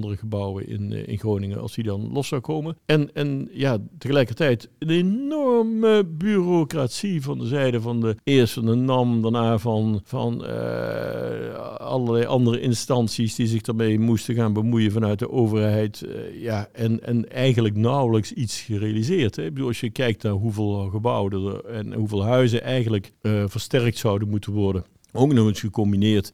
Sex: male